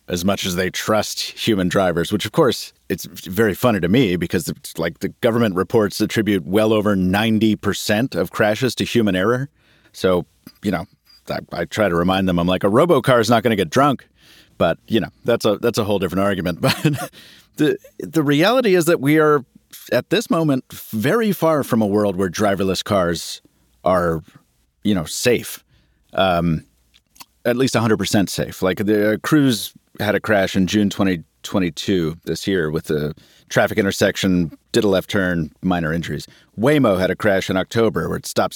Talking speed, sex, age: 190 wpm, male, 40-59